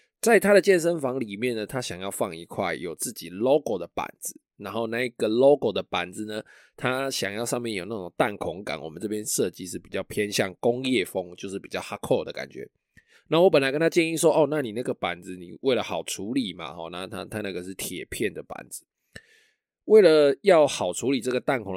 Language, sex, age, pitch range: Chinese, male, 20-39, 100-140 Hz